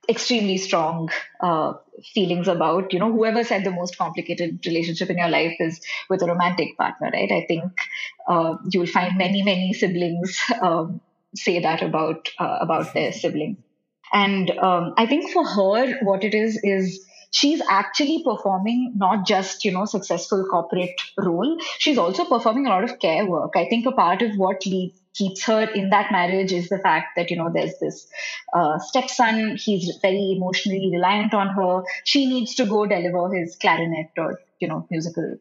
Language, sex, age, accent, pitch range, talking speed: English, female, 20-39, Indian, 180-230 Hz, 180 wpm